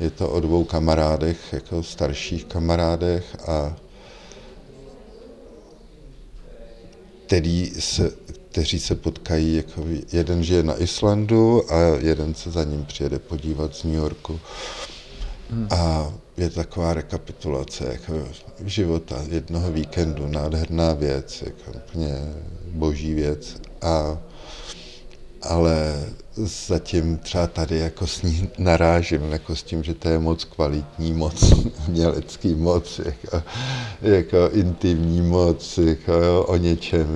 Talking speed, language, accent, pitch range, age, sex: 110 wpm, Czech, native, 80-95 Hz, 50-69, male